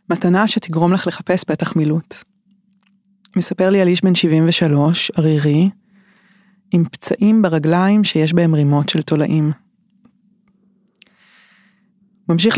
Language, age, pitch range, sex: Hebrew, 20-39, 165-200 Hz, female